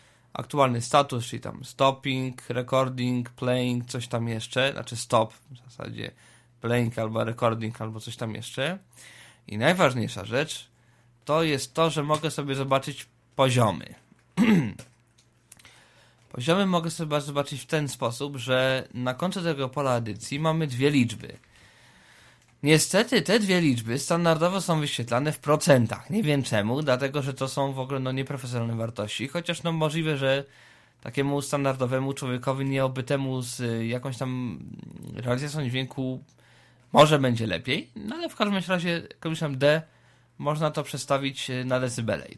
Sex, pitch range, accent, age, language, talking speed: male, 120-150 Hz, native, 20-39, Polish, 140 wpm